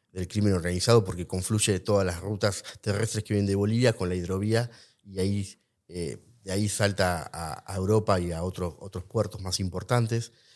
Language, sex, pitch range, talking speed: English, male, 95-125 Hz, 180 wpm